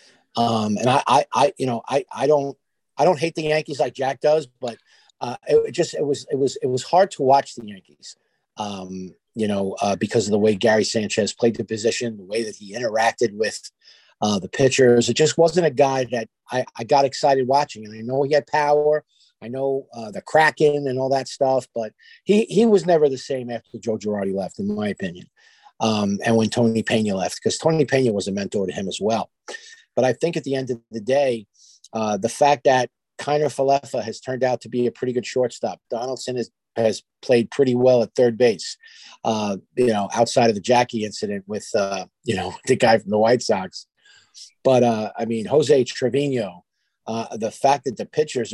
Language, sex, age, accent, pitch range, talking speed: English, male, 50-69, American, 110-145 Hz, 215 wpm